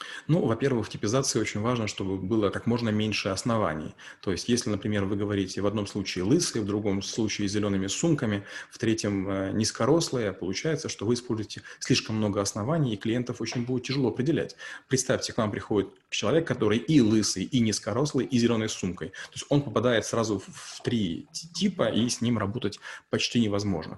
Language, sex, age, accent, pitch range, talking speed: Russian, male, 30-49, native, 100-130 Hz, 175 wpm